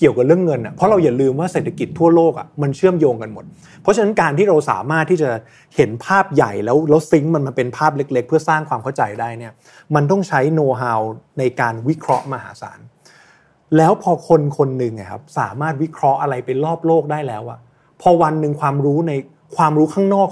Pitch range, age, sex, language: 125-160 Hz, 20-39, male, Thai